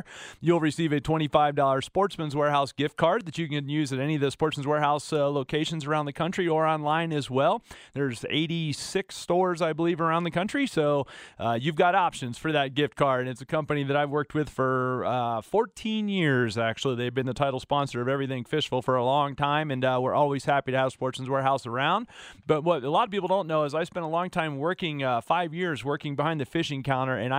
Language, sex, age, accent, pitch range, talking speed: English, male, 30-49, American, 135-175 Hz, 225 wpm